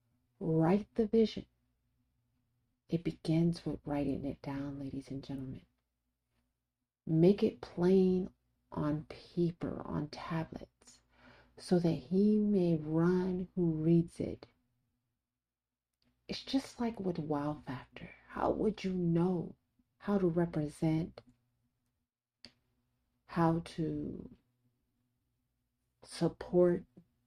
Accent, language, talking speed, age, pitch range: American, English, 95 wpm, 40-59, 120-180 Hz